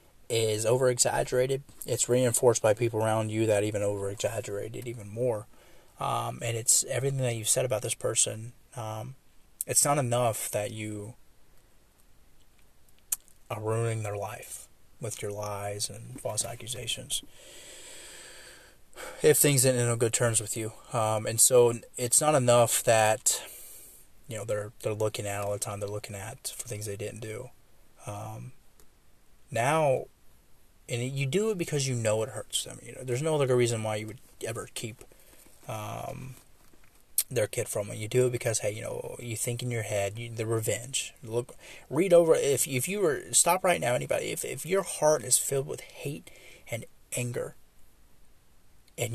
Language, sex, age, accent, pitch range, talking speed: English, male, 30-49, American, 110-130 Hz, 170 wpm